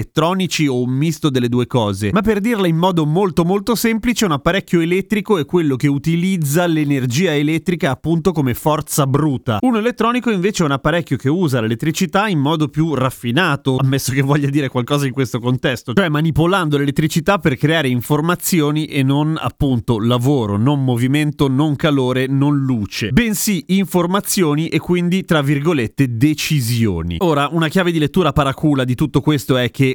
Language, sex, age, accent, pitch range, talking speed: Italian, male, 30-49, native, 140-180 Hz, 165 wpm